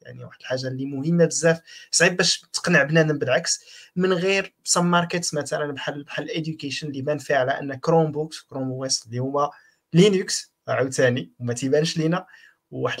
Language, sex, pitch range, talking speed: Arabic, male, 140-185 Hz, 185 wpm